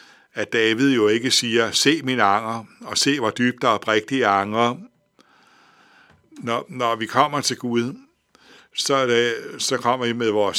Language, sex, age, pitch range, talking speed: Danish, male, 60-79, 110-125 Hz, 165 wpm